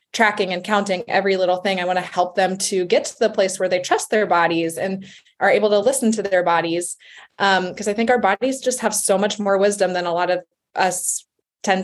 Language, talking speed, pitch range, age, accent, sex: English, 240 wpm, 180-220 Hz, 20-39, American, female